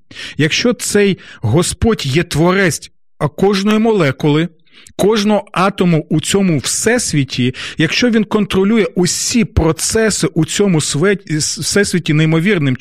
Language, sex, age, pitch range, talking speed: Ukrainian, male, 40-59, 145-200 Hz, 100 wpm